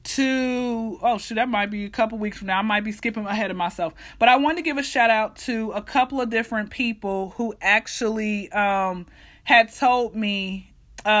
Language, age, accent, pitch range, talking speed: English, 20-39, American, 210-240 Hz, 210 wpm